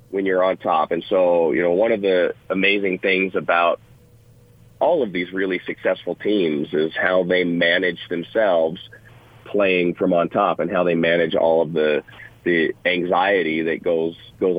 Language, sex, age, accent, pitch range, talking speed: English, male, 40-59, American, 85-120 Hz, 170 wpm